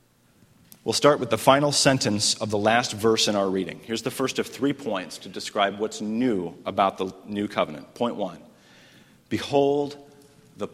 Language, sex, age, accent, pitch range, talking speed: English, male, 40-59, American, 110-140 Hz, 175 wpm